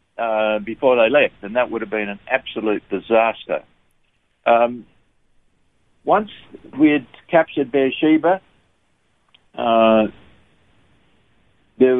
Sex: male